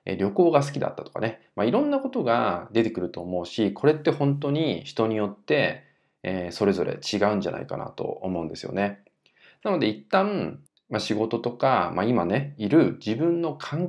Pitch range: 90-145 Hz